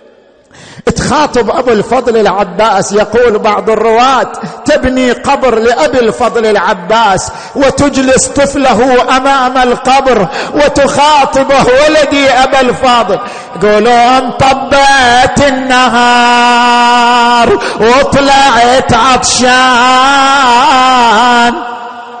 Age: 50-69